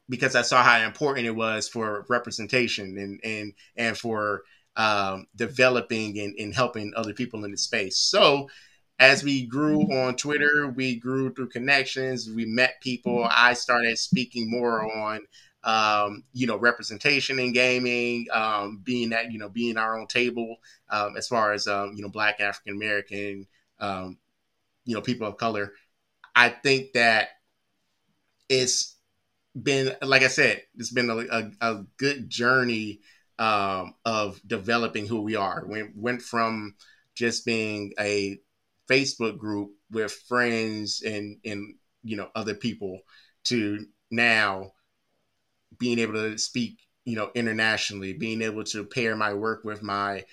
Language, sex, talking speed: English, male, 150 wpm